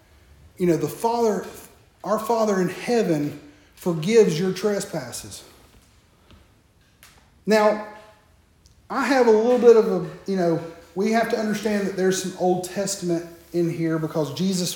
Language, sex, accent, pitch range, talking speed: English, male, American, 170-240 Hz, 140 wpm